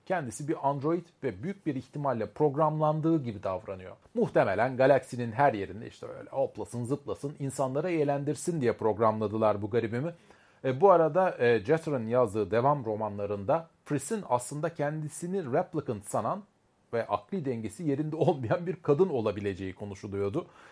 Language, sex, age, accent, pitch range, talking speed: Turkish, male, 40-59, native, 115-150 Hz, 130 wpm